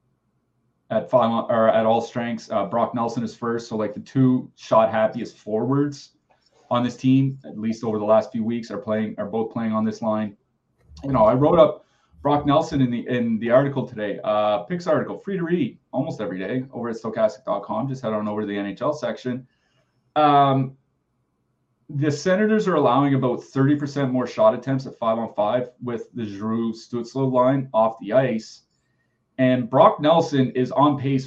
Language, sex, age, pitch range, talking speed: English, male, 30-49, 115-160 Hz, 185 wpm